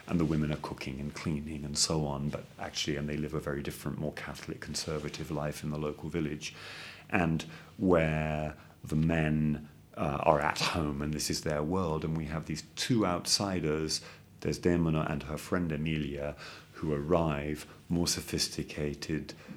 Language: English